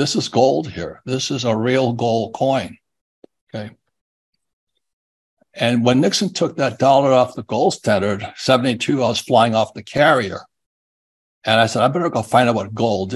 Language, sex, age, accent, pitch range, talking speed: English, male, 60-79, American, 110-130 Hz, 175 wpm